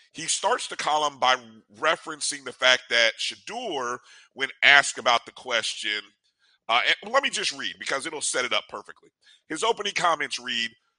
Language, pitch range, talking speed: English, 125-160 Hz, 165 wpm